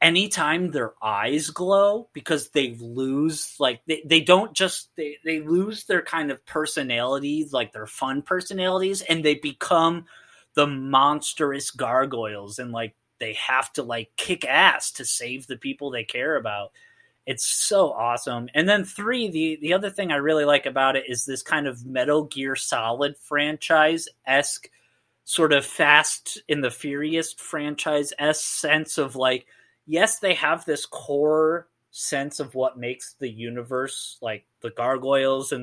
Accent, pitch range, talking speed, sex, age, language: American, 125-160 Hz, 155 wpm, male, 30-49, English